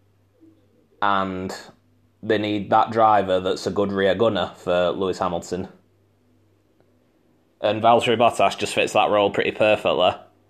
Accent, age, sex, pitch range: British, 20-39, male, 95-115 Hz